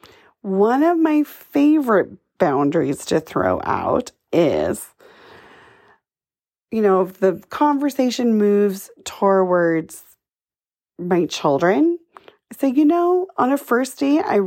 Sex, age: female, 30-49